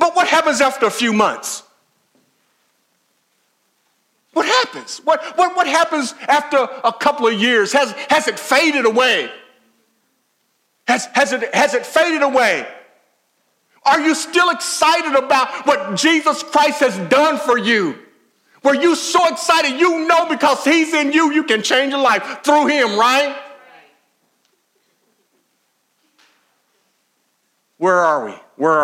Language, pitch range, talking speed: English, 230-315 Hz, 130 wpm